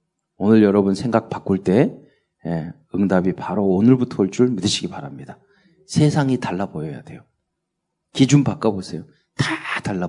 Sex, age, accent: male, 40-59, native